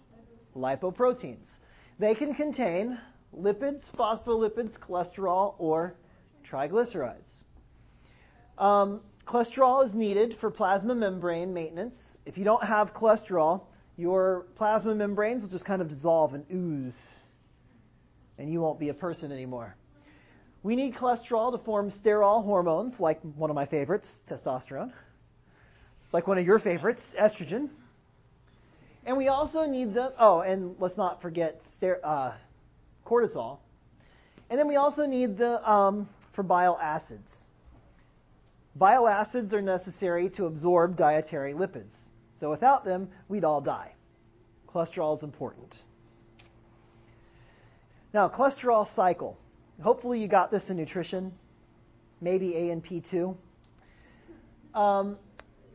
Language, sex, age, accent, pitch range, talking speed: English, male, 40-59, American, 150-215 Hz, 120 wpm